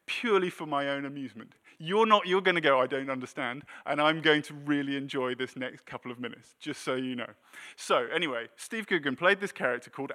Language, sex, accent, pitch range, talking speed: English, male, British, 135-180 Hz, 225 wpm